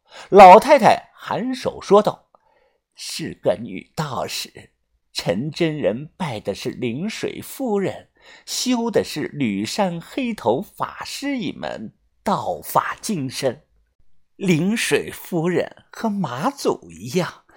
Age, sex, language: 50-69, male, Chinese